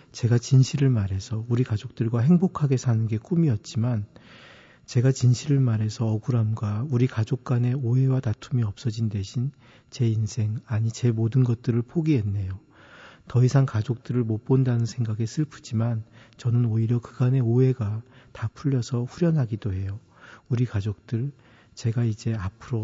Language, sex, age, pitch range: Korean, male, 40-59, 110-130 Hz